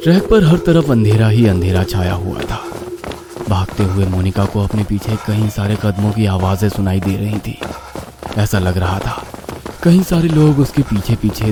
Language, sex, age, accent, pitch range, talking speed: Hindi, male, 30-49, native, 100-160 Hz, 180 wpm